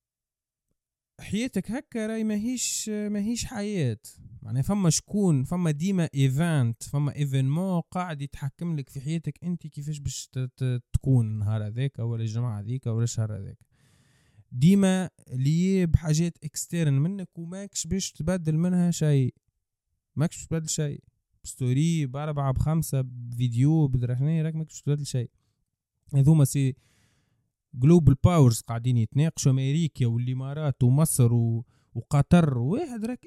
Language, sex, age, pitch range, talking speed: Arabic, male, 20-39, 125-175 Hz, 115 wpm